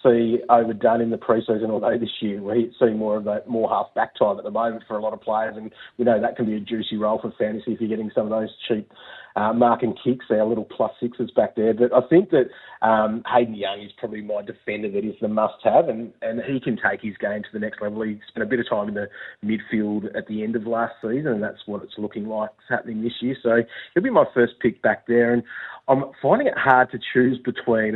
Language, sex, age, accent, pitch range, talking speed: English, male, 30-49, Australian, 105-115 Hz, 255 wpm